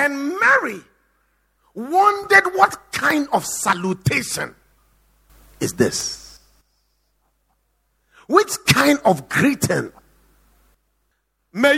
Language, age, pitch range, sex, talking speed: English, 50-69, 225-340 Hz, male, 70 wpm